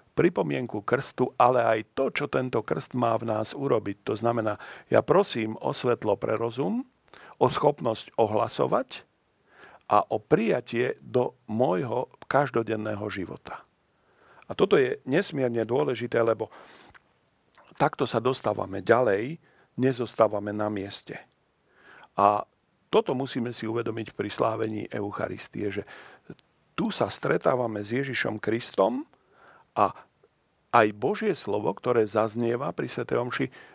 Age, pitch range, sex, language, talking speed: 40-59, 110-130 Hz, male, Slovak, 120 wpm